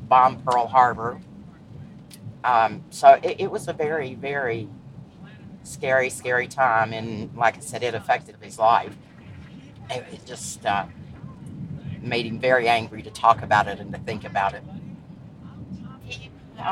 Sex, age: female, 50-69